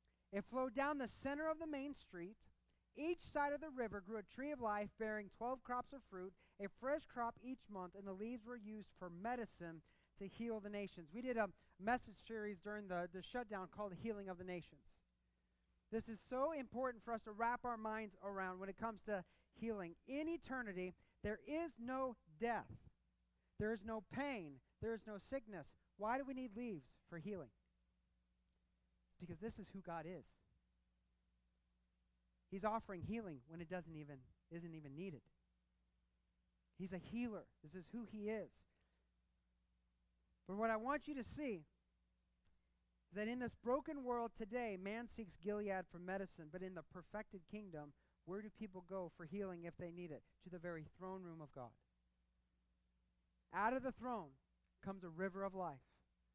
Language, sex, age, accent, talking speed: English, male, 30-49, American, 175 wpm